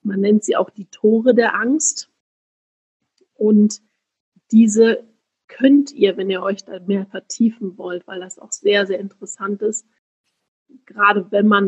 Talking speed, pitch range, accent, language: 150 wpm, 195-225 Hz, German, German